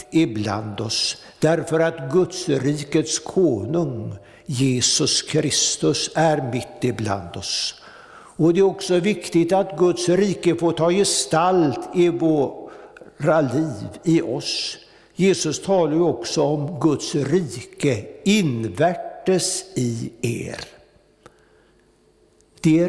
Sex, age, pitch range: male, 60-79, 135-175 Hz